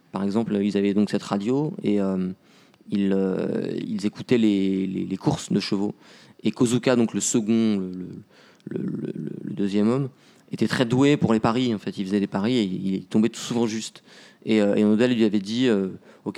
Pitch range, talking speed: 100-125 Hz, 205 wpm